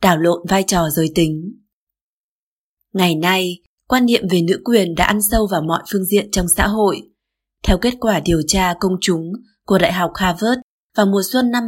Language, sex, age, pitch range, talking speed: Vietnamese, female, 20-39, 170-215 Hz, 195 wpm